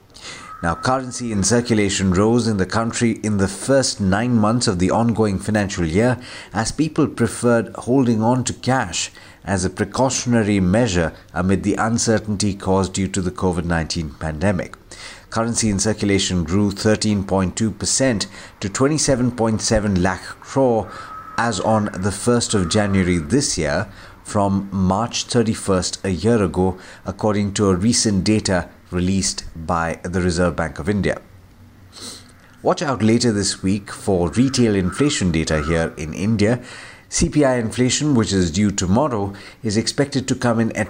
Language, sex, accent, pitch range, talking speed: English, male, Indian, 95-120 Hz, 140 wpm